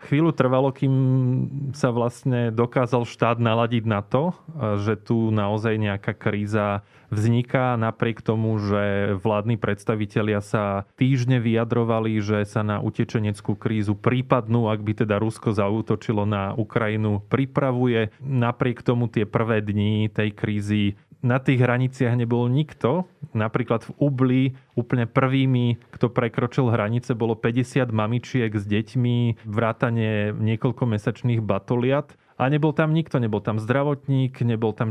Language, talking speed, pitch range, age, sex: Slovak, 130 wpm, 110-130 Hz, 20-39, male